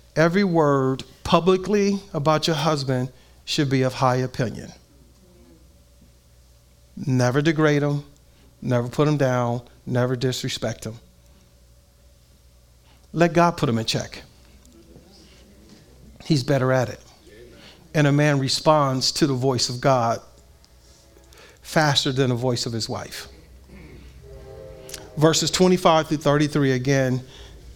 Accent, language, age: American, English, 50-69